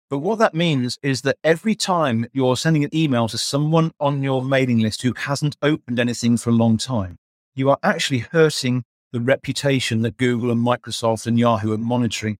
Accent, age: British, 40-59